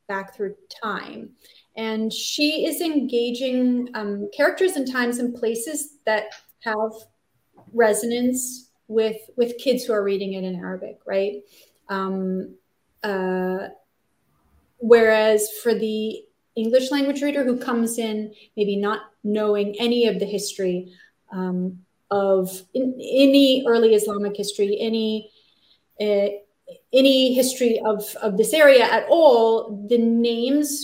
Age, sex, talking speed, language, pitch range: 30-49, female, 120 wpm, English, 210-270 Hz